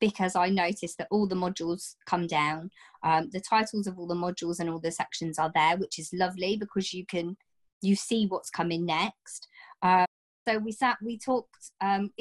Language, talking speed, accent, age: English, 190 wpm, British, 20-39